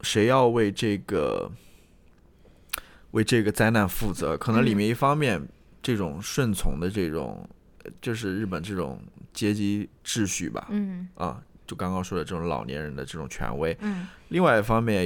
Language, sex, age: Chinese, male, 20-39